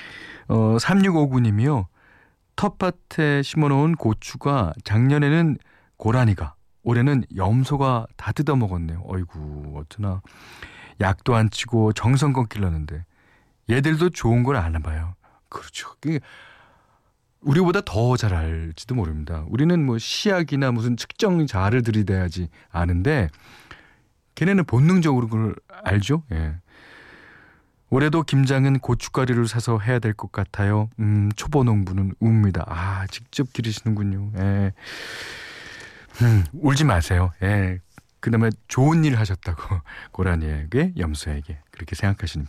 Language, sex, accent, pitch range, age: Korean, male, native, 95-140 Hz, 40-59